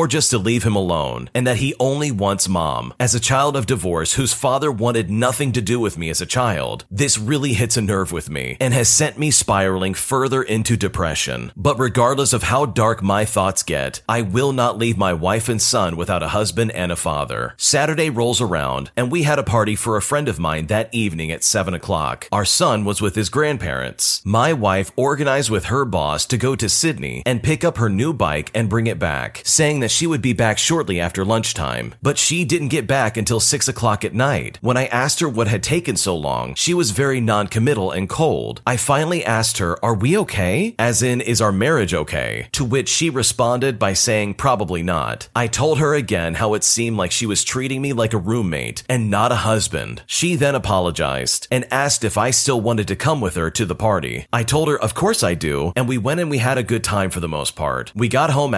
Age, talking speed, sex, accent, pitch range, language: 40-59, 225 wpm, male, American, 95-130 Hz, English